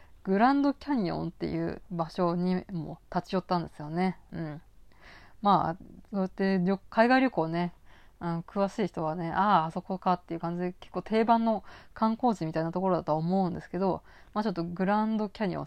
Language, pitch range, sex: Japanese, 175-220 Hz, female